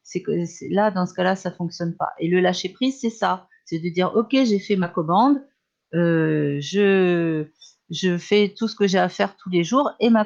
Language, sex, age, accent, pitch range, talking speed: French, female, 40-59, French, 165-205 Hz, 235 wpm